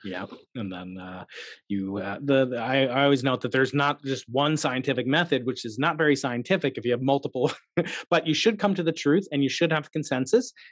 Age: 30-49